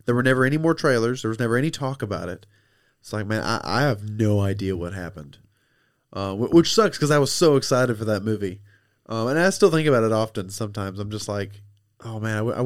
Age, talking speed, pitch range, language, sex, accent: 20-39, 240 wpm, 100-125 Hz, English, male, American